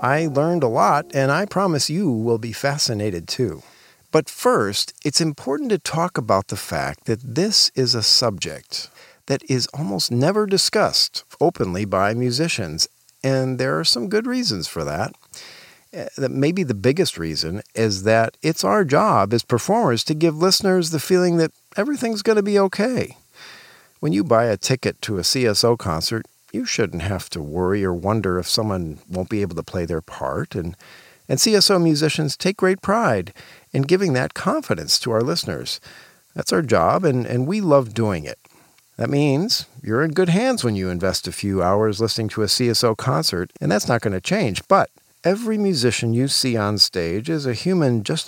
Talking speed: 180 wpm